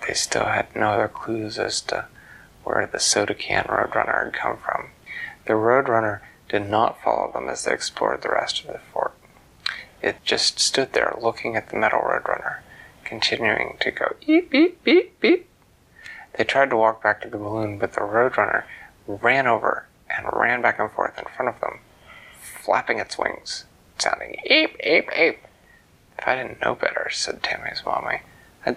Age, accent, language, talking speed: 30-49, American, English, 175 wpm